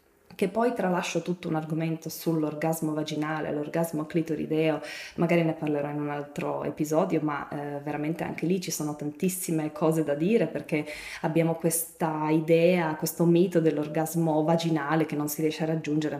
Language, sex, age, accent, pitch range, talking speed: Italian, female, 20-39, native, 150-165 Hz, 155 wpm